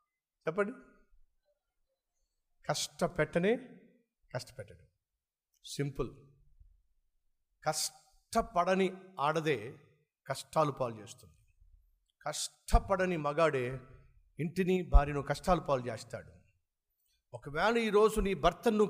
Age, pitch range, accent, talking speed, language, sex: 50-69, 110-175 Hz, native, 65 wpm, Telugu, male